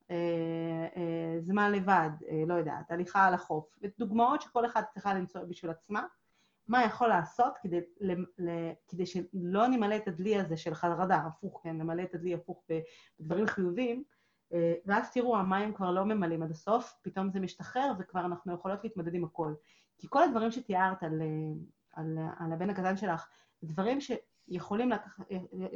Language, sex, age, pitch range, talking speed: Hebrew, female, 30-49, 170-220 Hz, 155 wpm